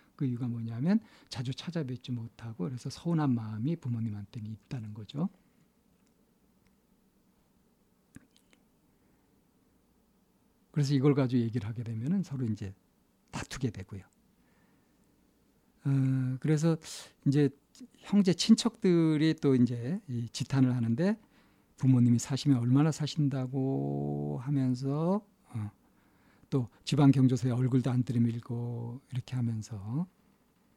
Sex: male